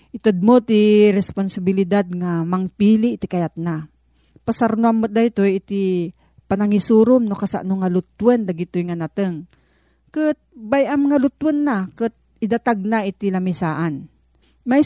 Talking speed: 125 wpm